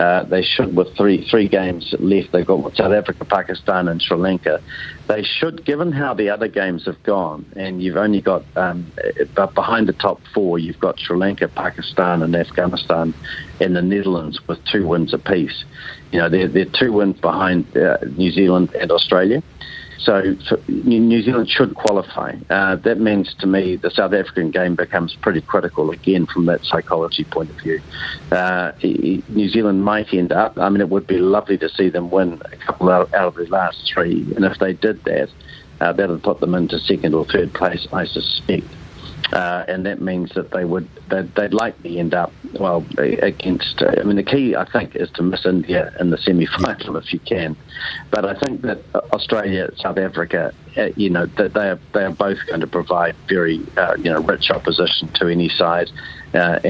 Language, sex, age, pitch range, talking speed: English, male, 50-69, 85-100 Hz, 195 wpm